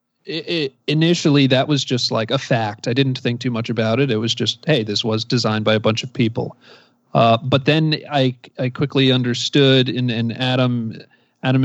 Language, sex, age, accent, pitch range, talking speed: English, male, 40-59, American, 120-135 Hz, 195 wpm